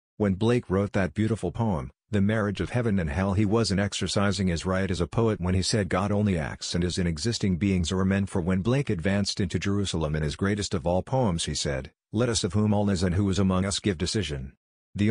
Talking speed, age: 240 wpm, 50-69